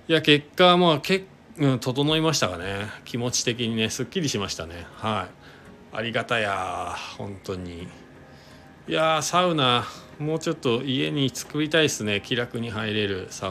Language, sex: Japanese, male